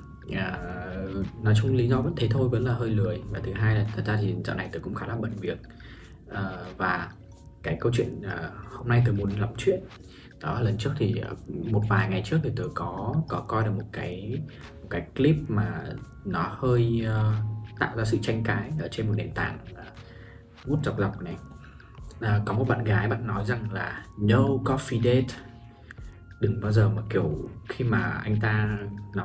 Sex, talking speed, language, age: male, 205 wpm, Vietnamese, 20-39